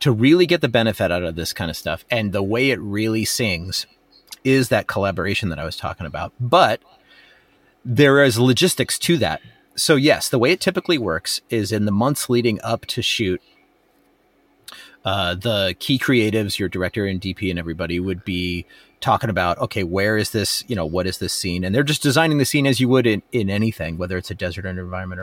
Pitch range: 95-130 Hz